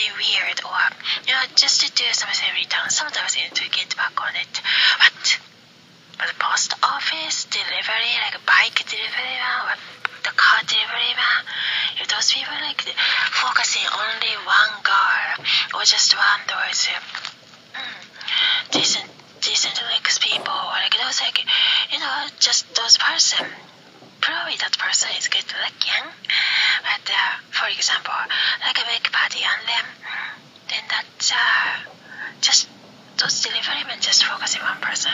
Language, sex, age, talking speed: English, female, 20-39, 155 wpm